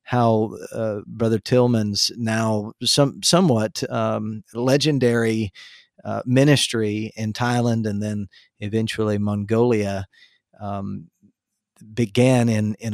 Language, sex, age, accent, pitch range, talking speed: English, male, 40-59, American, 105-125 Hz, 95 wpm